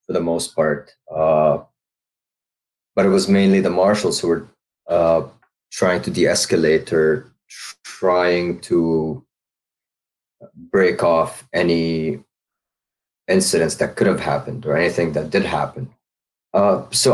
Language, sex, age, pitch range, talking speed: English, male, 30-49, 85-100 Hz, 125 wpm